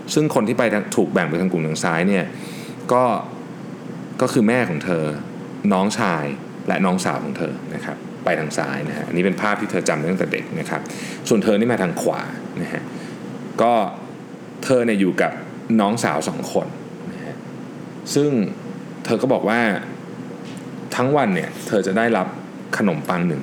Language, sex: Thai, male